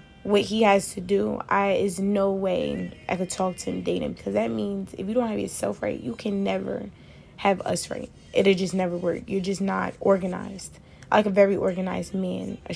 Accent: American